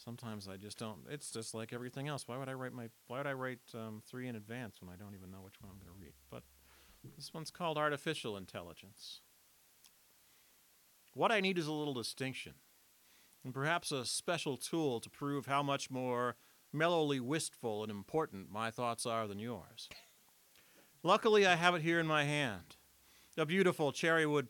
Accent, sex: American, male